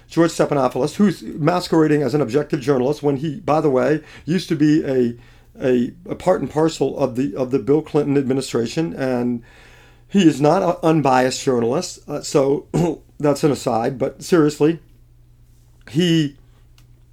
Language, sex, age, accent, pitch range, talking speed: English, male, 40-59, American, 120-160 Hz, 155 wpm